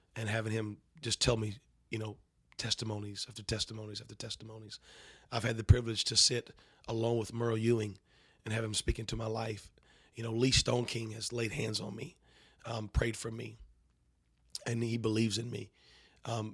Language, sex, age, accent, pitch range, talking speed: English, male, 30-49, American, 105-115 Hz, 180 wpm